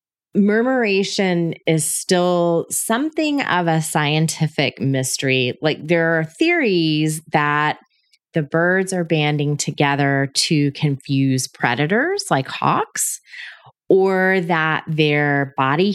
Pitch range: 145-195 Hz